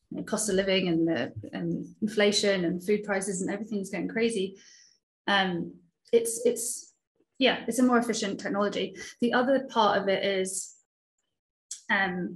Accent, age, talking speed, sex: British, 20-39, 150 wpm, female